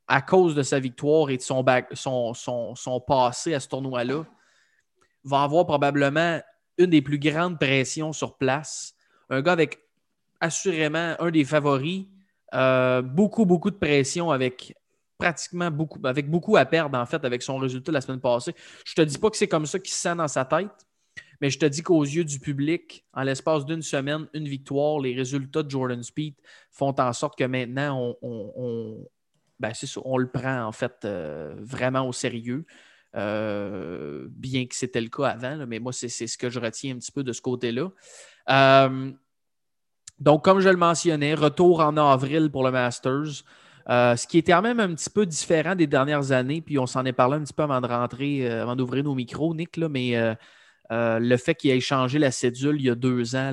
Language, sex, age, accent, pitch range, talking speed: French, male, 20-39, Canadian, 125-155 Hz, 205 wpm